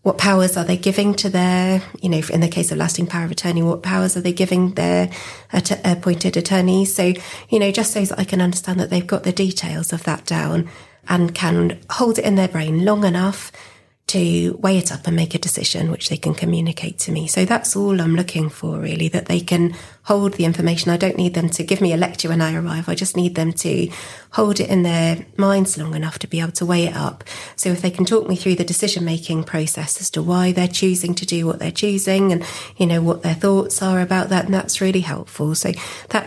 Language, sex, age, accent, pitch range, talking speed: English, female, 30-49, British, 165-190 Hz, 240 wpm